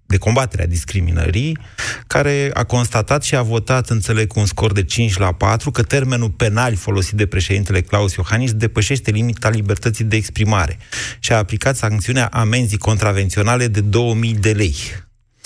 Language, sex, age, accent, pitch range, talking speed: Romanian, male, 30-49, native, 95-125 Hz, 155 wpm